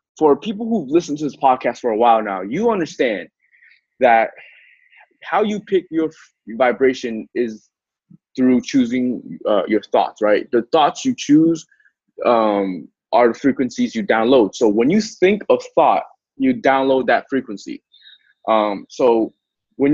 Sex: male